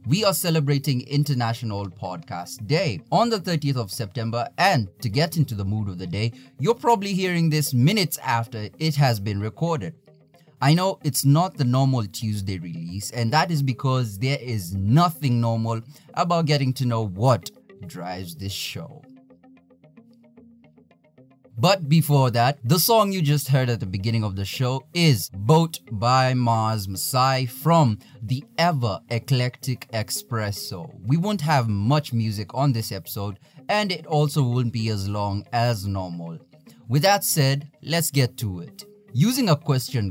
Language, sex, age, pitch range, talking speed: English, male, 30-49, 110-150 Hz, 155 wpm